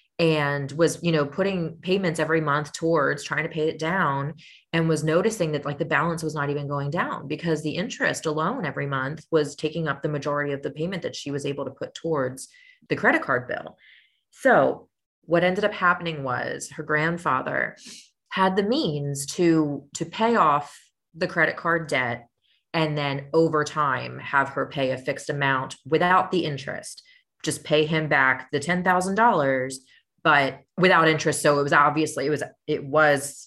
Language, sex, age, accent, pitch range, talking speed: English, female, 30-49, American, 135-165 Hz, 180 wpm